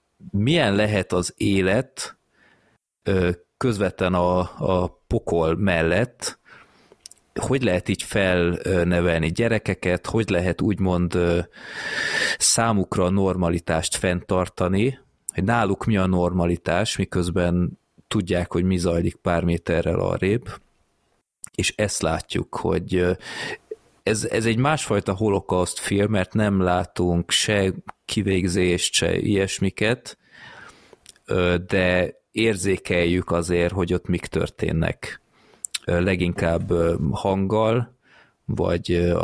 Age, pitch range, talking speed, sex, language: 30-49, 85-100 Hz, 95 wpm, male, Hungarian